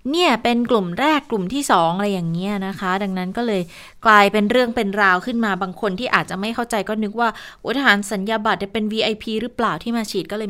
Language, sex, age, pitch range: Thai, female, 20-39, 185-230 Hz